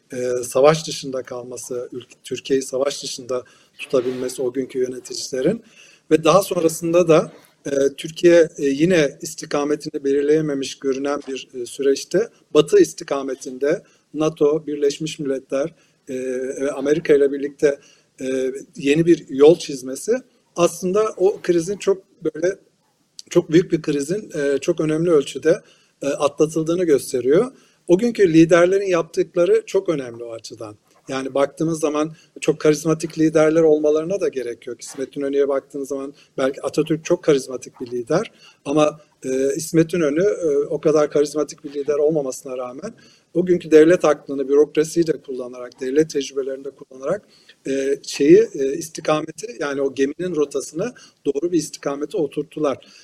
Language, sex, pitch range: Turkish, male, 140-170 Hz